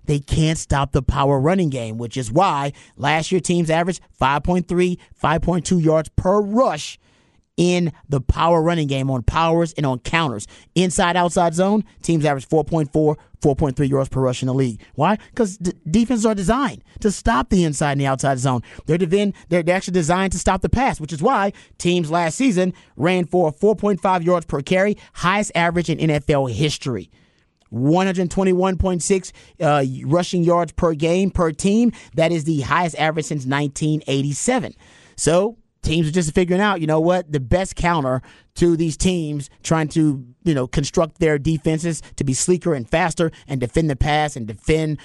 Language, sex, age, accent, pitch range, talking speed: English, male, 30-49, American, 145-180 Hz, 165 wpm